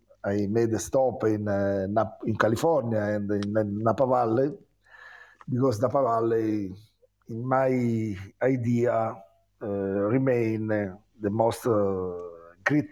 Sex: male